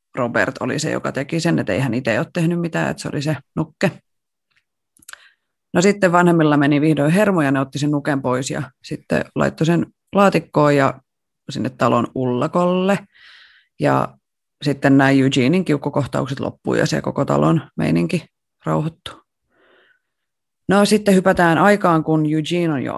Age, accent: 30-49, native